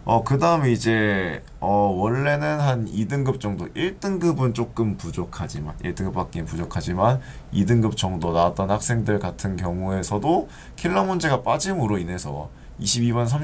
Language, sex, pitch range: Korean, male, 100-145 Hz